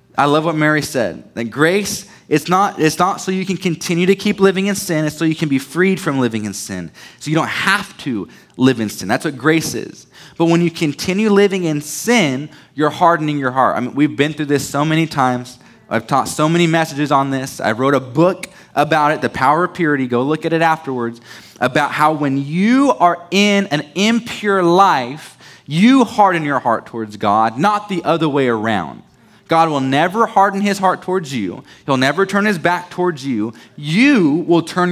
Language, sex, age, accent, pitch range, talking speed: English, male, 20-39, American, 135-175 Hz, 210 wpm